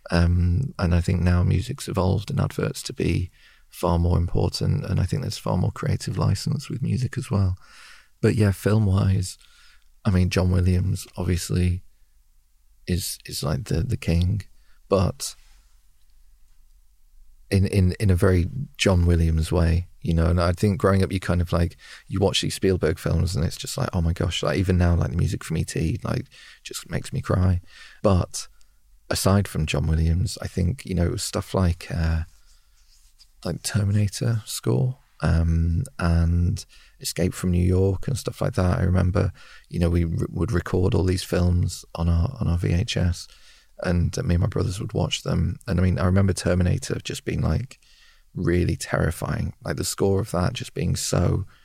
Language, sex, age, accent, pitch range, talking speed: English, male, 40-59, British, 85-100 Hz, 180 wpm